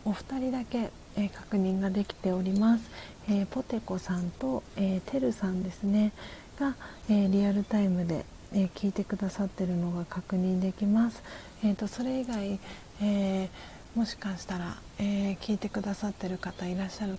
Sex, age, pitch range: female, 40-59, 190-220 Hz